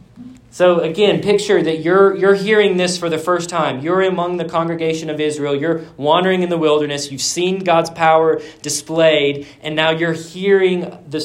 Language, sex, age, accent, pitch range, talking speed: English, male, 40-59, American, 130-165 Hz, 175 wpm